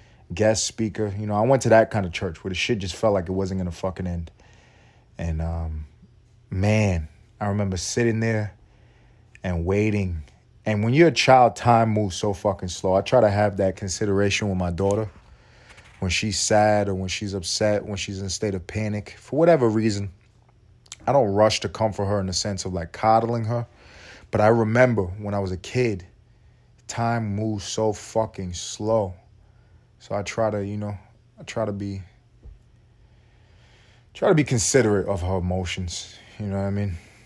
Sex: male